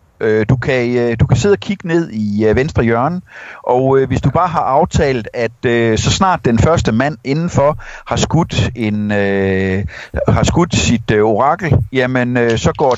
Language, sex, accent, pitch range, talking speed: Danish, male, native, 115-155 Hz, 145 wpm